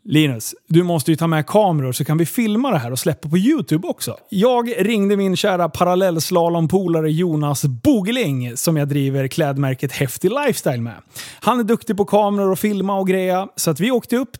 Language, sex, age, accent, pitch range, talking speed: Swedish, male, 30-49, native, 145-200 Hz, 190 wpm